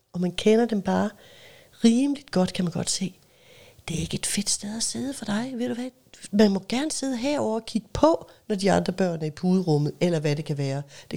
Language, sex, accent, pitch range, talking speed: Danish, female, native, 155-220 Hz, 240 wpm